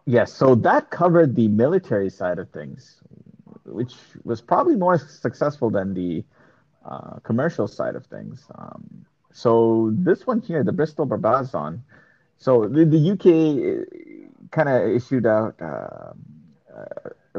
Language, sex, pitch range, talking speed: English, male, 105-145 Hz, 135 wpm